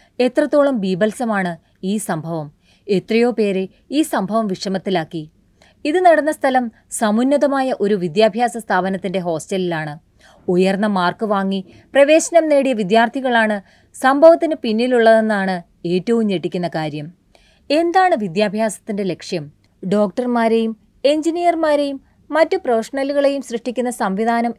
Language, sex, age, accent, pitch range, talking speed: Malayalam, female, 20-39, native, 190-265 Hz, 90 wpm